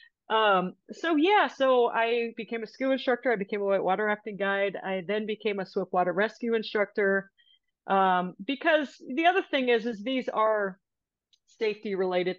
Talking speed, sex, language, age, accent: 170 wpm, female, English, 40-59, American